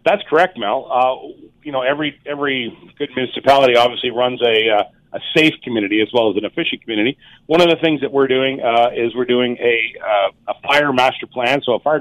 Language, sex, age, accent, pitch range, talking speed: English, male, 40-59, American, 115-145 Hz, 215 wpm